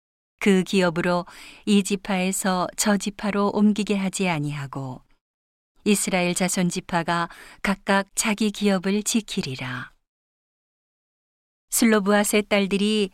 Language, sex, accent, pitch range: Korean, female, native, 175-205 Hz